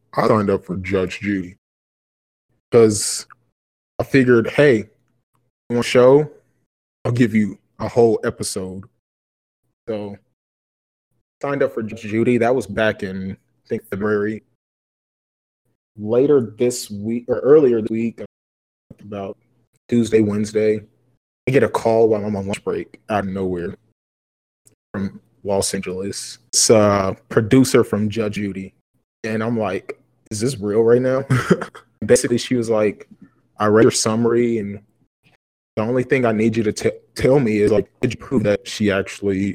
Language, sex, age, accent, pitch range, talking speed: English, male, 20-39, American, 100-120 Hz, 150 wpm